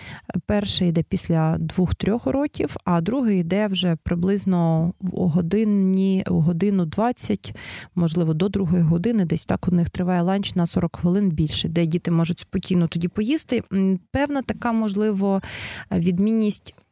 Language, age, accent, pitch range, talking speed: Ukrainian, 30-49, native, 175-215 Hz, 140 wpm